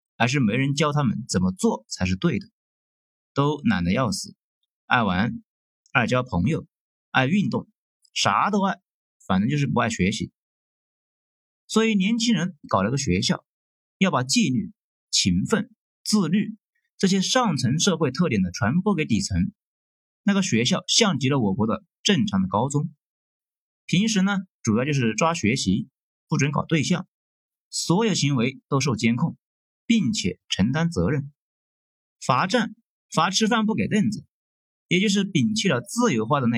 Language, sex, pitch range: Chinese, male, 140-210 Hz